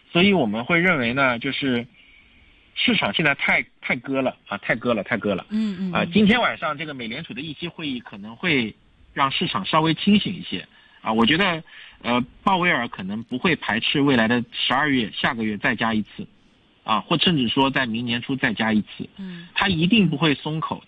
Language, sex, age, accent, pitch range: Chinese, male, 50-69, native, 130-180 Hz